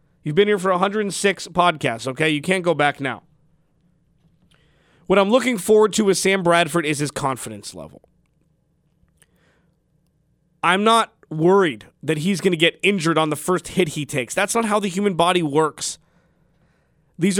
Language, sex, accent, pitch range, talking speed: English, male, American, 155-200 Hz, 160 wpm